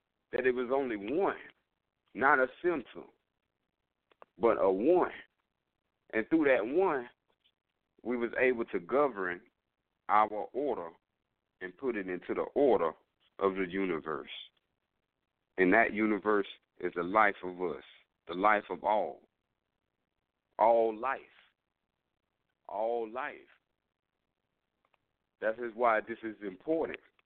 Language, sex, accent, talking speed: English, male, American, 115 wpm